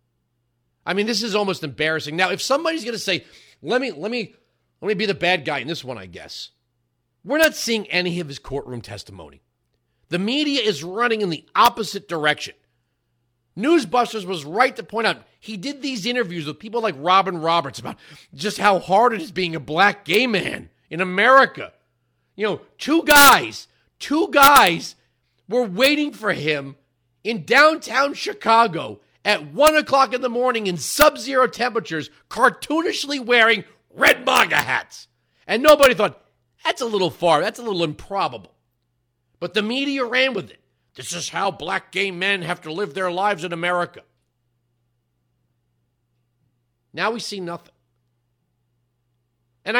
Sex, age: male, 40-59